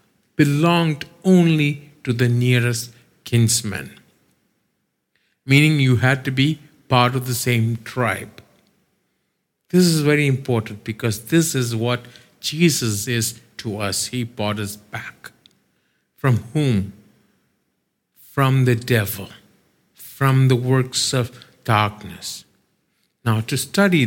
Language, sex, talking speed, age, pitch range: English, male, 110 wpm, 50-69, 105-140 Hz